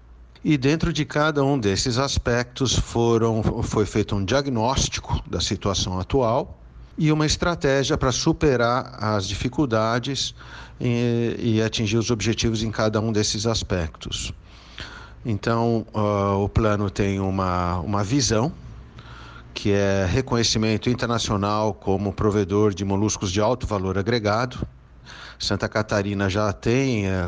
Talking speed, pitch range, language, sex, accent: 120 wpm, 100-115 Hz, Portuguese, male, Brazilian